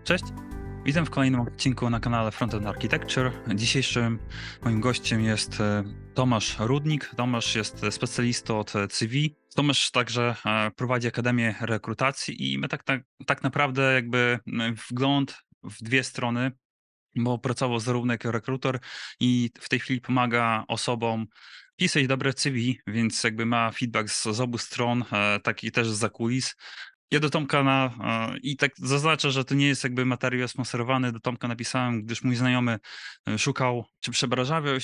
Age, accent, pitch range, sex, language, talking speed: 20-39, native, 115-140 Hz, male, Polish, 145 wpm